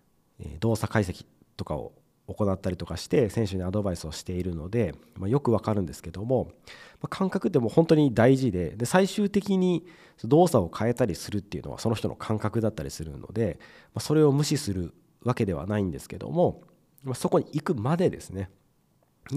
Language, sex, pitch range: Japanese, male, 95-130 Hz